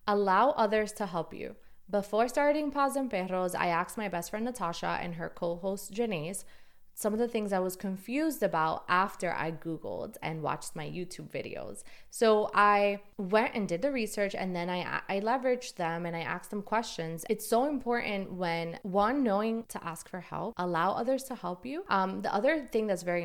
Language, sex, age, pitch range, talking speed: English, female, 20-39, 175-225 Hz, 195 wpm